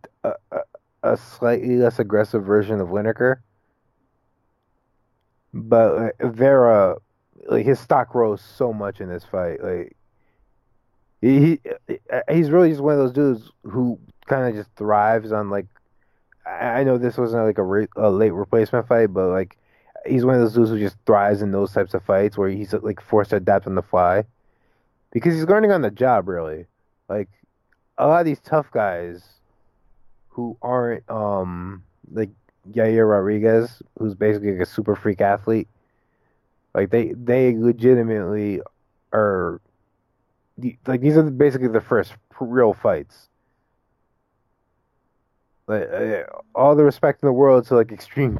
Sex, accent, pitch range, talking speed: male, American, 105-125 Hz, 150 wpm